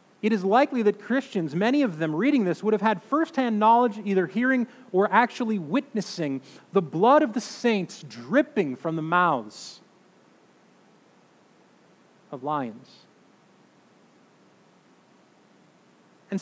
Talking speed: 115 wpm